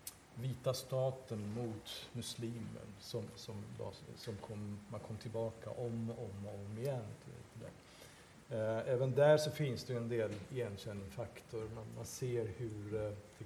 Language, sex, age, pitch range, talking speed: Swedish, male, 50-69, 115-135 Hz, 140 wpm